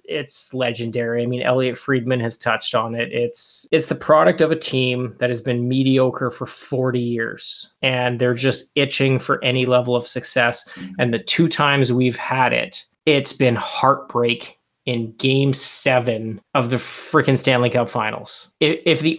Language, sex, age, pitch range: English, male, 20-39, 120-140 Hz